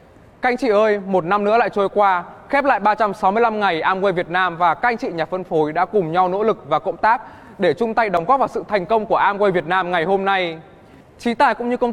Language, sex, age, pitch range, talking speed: Vietnamese, male, 20-39, 180-230 Hz, 265 wpm